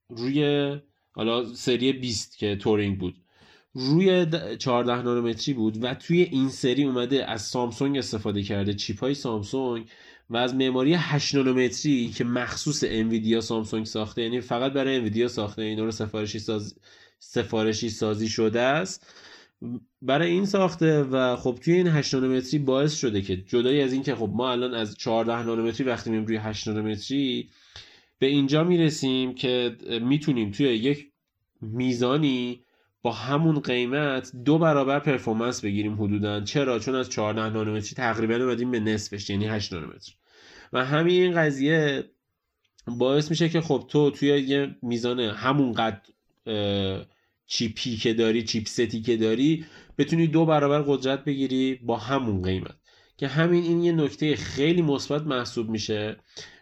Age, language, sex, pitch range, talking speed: 20-39, Persian, male, 110-140 Hz, 145 wpm